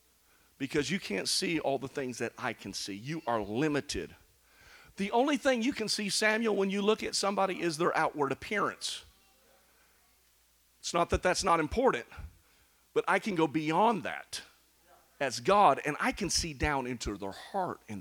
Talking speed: 175 wpm